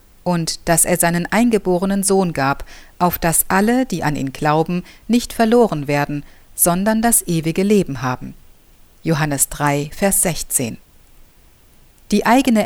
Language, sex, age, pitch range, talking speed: German, female, 50-69, 155-205 Hz, 135 wpm